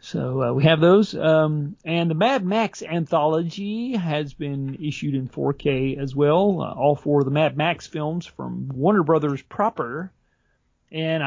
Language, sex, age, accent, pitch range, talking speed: English, male, 40-59, American, 140-165 Hz, 165 wpm